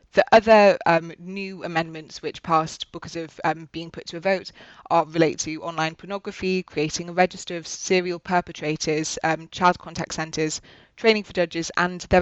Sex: female